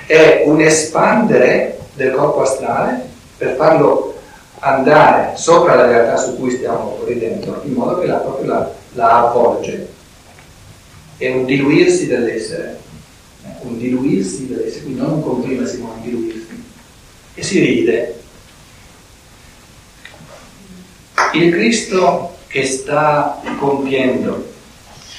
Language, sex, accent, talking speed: Italian, male, native, 110 wpm